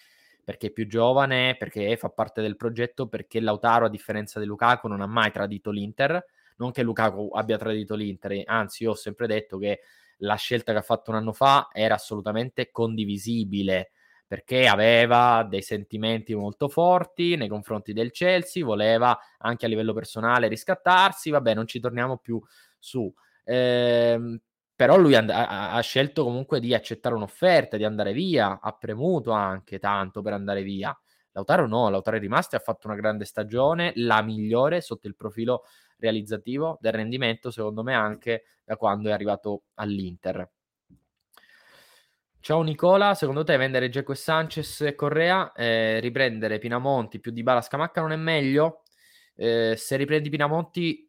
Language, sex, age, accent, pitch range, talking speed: Italian, male, 20-39, native, 105-135 Hz, 160 wpm